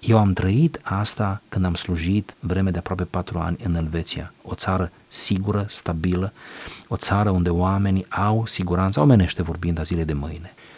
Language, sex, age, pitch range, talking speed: Romanian, male, 30-49, 90-115 Hz, 165 wpm